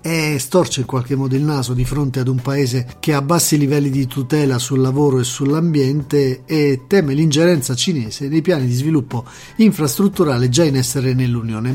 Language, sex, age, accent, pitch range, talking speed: Italian, male, 40-59, native, 130-160 Hz, 175 wpm